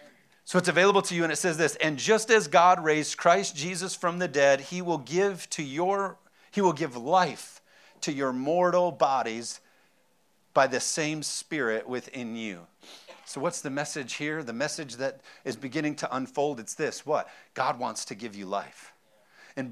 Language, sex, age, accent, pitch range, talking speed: English, male, 40-59, American, 130-170 Hz, 185 wpm